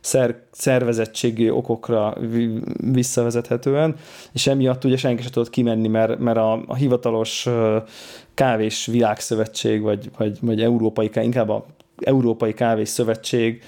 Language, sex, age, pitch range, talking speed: Hungarian, male, 20-39, 110-130 Hz, 120 wpm